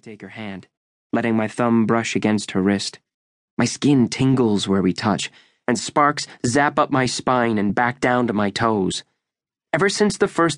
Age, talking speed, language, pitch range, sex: 20-39, 180 wpm, English, 105-140 Hz, male